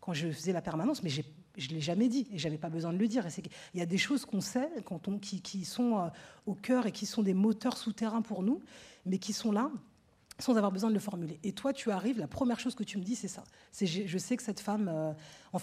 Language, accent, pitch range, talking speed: French, French, 180-230 Hz, 275 wpm